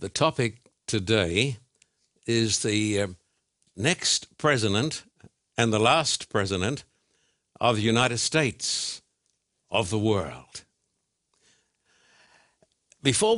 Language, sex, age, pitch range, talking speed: English, male, 60-79, 105-135 Hz, 90 wpm